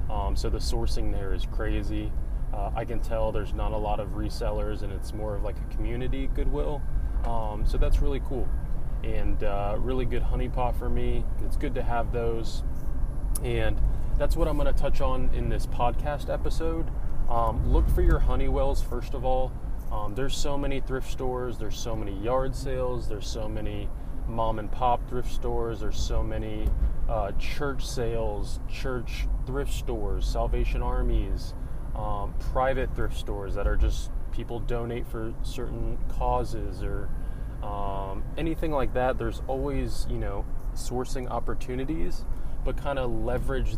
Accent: American